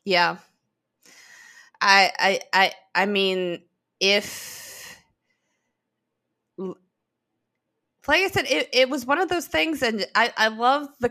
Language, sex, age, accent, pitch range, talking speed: English, female, 20-39, American, 170-230 Hz, 120 wpm